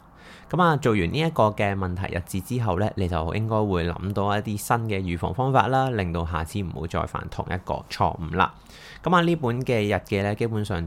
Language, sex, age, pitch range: Chinese, male, 20-39, 85-120 Hz